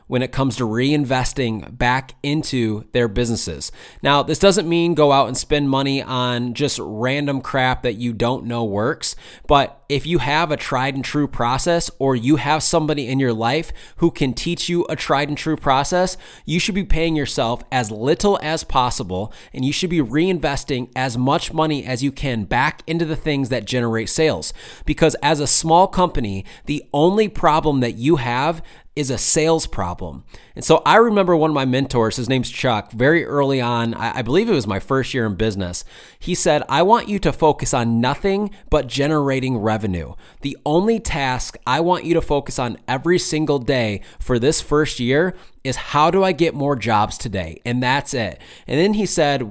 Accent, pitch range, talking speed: American, 120-160 Hz, 195 wpm